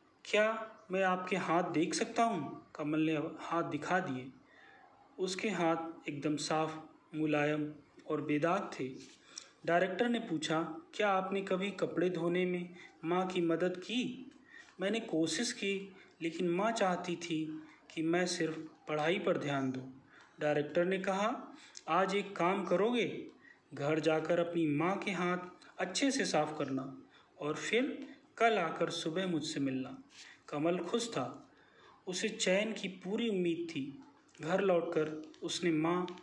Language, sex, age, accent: Hindi, male, 30-49, native